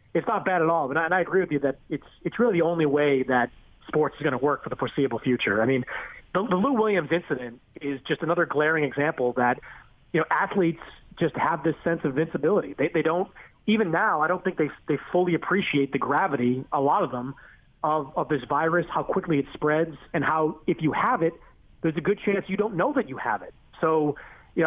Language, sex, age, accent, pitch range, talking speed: English, male, 30-49, American, 140-165 Hz, 235 wpm